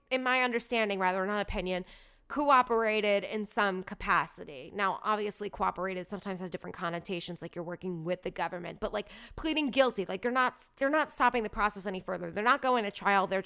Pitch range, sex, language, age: 200-260 Hz, female, English, 20-39